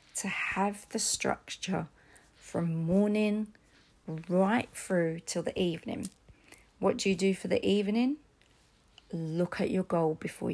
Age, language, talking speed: 40-59, English, 130 wpm